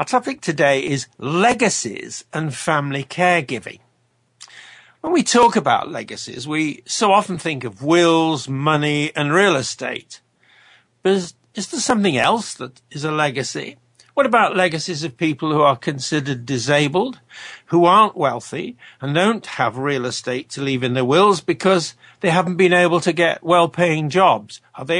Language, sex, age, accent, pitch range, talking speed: English, male, 50-69, British, 140-185 Hz, 160 wpm